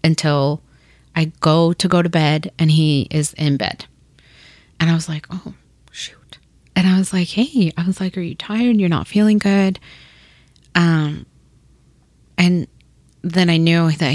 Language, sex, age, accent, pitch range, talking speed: English, female, 30-49, American, 150-180 Hz, 165 wpm